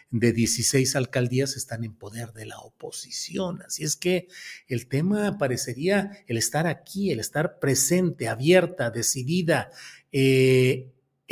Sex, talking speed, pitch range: male, 125 wpm, 125-165 Hz